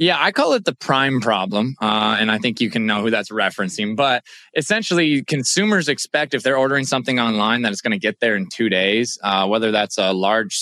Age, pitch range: 20-39, 110-135 Hz